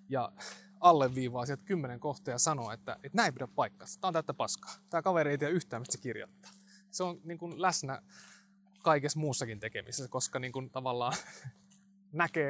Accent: native